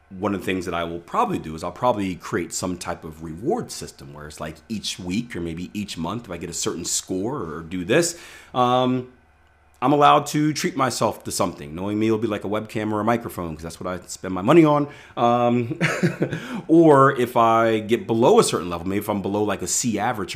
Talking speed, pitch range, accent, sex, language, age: 235 wpm, 90-120 Hz, American, male, English, 30-49